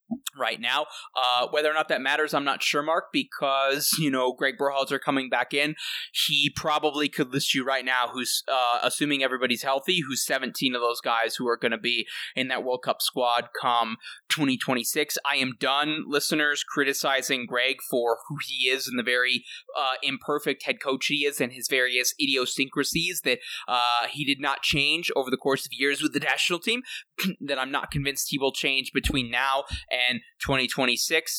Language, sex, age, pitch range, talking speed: English, male, 20-39, 125-145 Hz, 190 wpm